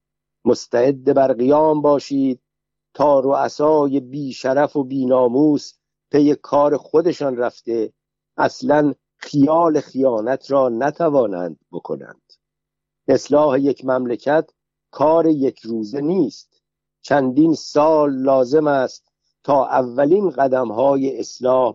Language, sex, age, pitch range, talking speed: Persian, male, 50-69, 130-150 Hz, 95 wpm